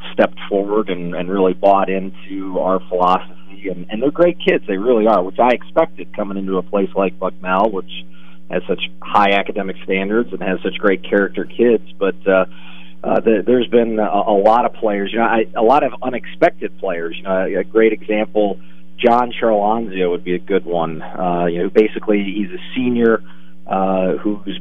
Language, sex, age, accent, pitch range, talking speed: English, male, 40-59, American, 90-105 Hz, 195 wpm